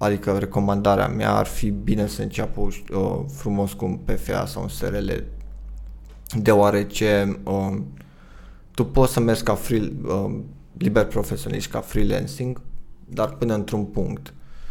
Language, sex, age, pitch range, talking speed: Romanian, male, 20-39, 100-135 Hz, 135 wpm